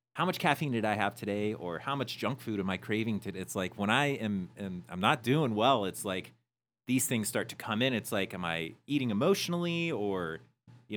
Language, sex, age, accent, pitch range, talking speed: English, male, 30-49, American, 100-130 Hz, 230 wpm